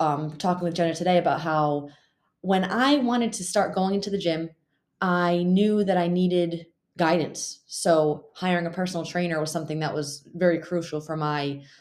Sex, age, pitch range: female, 20-39, 160-185 Hz